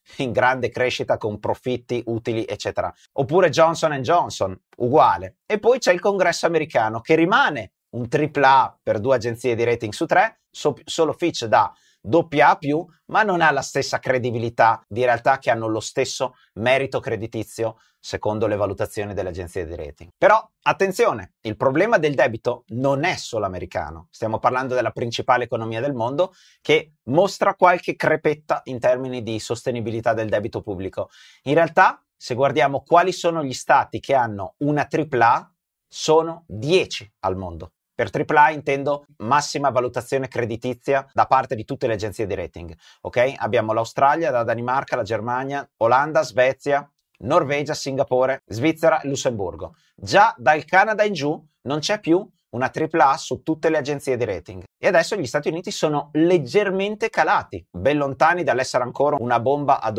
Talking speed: 160 wpm